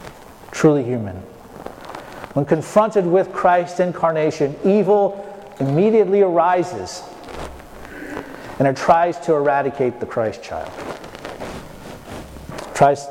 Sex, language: male, English